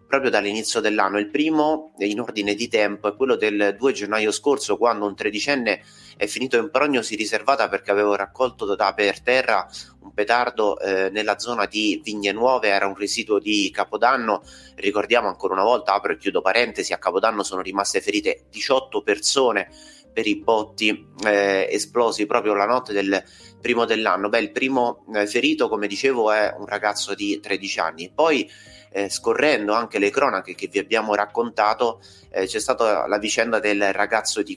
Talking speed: 170 wpm